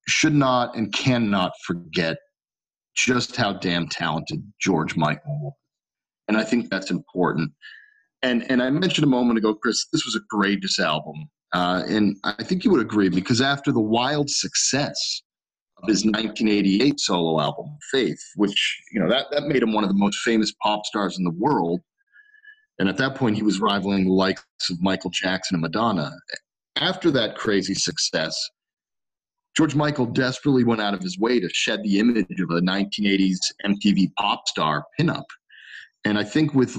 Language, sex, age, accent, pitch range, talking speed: English, male, 40-59, American, 100-135 Hz, 175 wpm